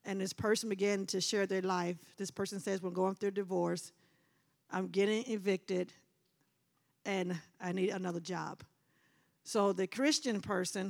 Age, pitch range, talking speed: 50-69, 190-235 Hz, 155 wpm